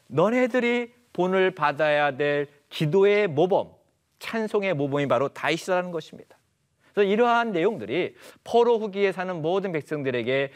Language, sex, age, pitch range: Korean, male, 40-59, 145-200 Hz